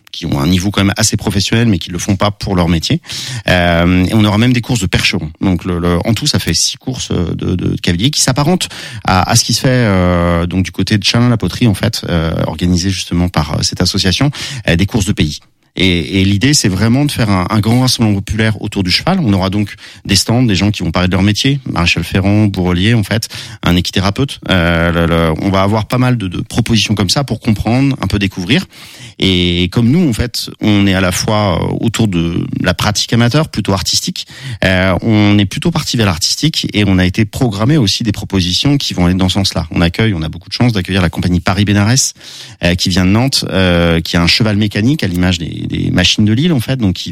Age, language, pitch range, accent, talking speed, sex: 40-59, French, 90-115 Hz, French, 245 wpm, male